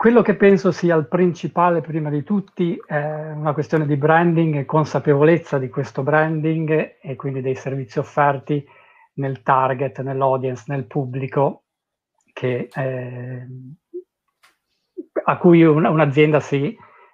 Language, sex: Italian, male